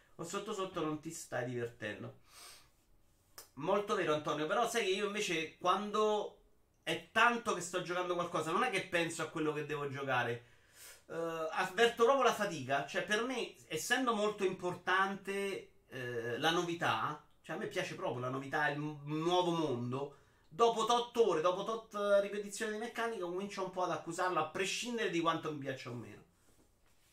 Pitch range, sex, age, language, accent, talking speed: 135-200 Hz, male, 30-49, Italian, native, 175 wpm